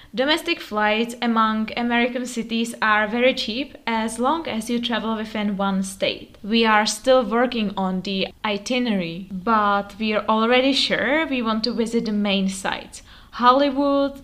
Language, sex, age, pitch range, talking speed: Czech, female, 20-39, 210-260 Hz, 150 wpm